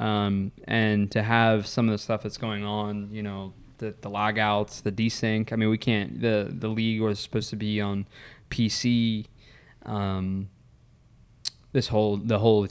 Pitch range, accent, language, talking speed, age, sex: 105-120 Hz, American, English, 170 wpm, 20-39, male